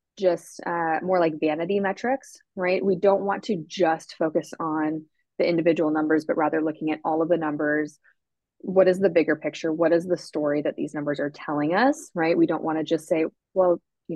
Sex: female